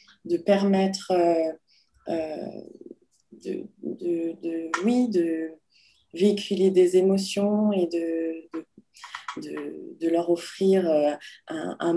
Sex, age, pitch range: female, 20-39, 170-195 Hz